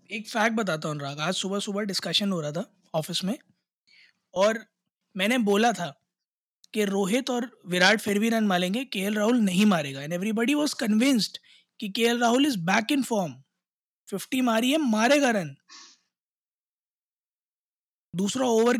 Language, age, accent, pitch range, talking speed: Hindi, 20-39, native, 180-230 Hz, 155 wpm